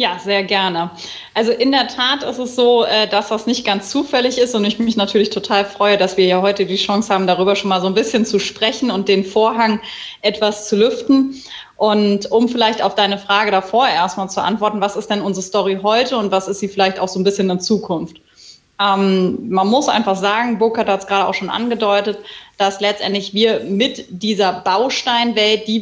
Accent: German